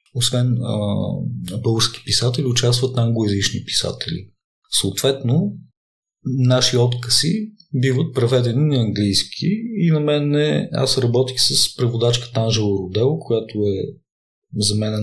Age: 40-59